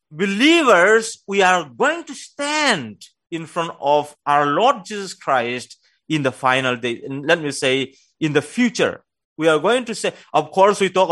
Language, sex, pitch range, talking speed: English, male, 150-250 Hz, 175 wpm